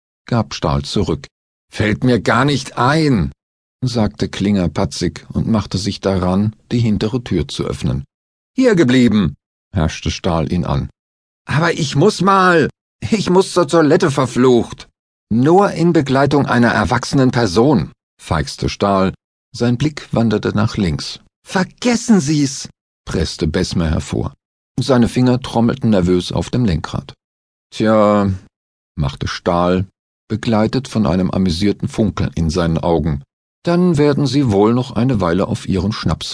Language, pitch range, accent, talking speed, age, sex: German, 90-135 Hz, German, 135 wpm, 50-69, male